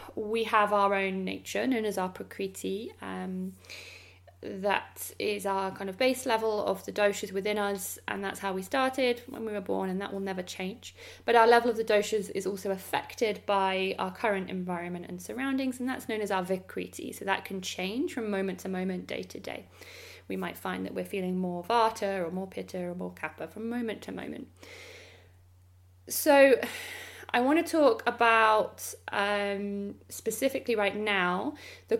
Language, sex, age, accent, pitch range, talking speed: English, female, 20-39, British, 170-230 Hz, 180 wpm